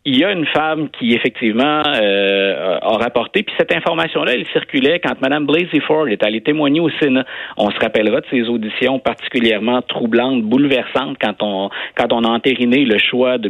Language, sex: French, male